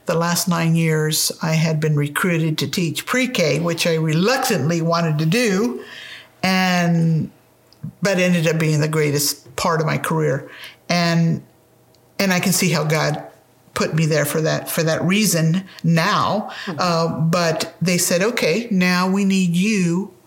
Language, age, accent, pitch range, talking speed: English, 50-69, American, 160-180 Hz, 155 wpm